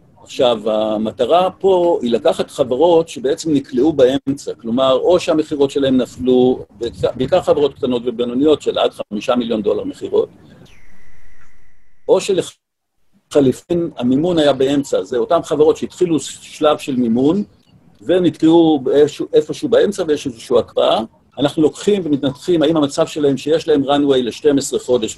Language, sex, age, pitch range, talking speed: Hebrew, male, 50-69, 130-195 Hz, 125 wpm